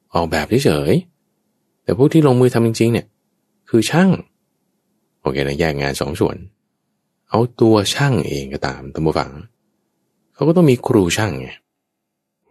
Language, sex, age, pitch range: Thai, male, 20-39, 80-110 Hz